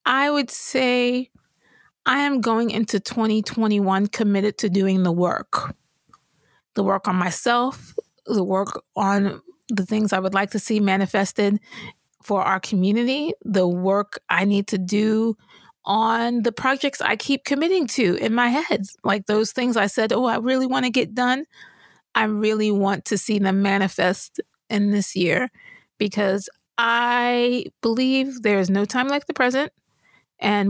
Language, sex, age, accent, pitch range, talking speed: English, female, 30-49, American, 200-250 Hz, 155 wpm